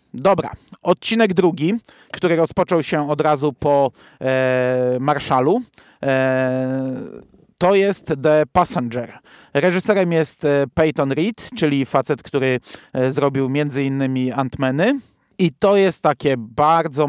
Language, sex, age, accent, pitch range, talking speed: Polish, male, 40-59, native, 130-160 Hz, 110 wpm